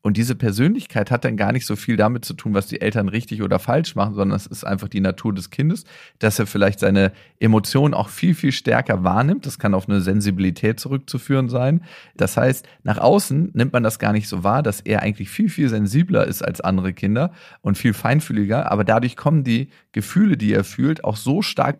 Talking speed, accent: 215 wpm, German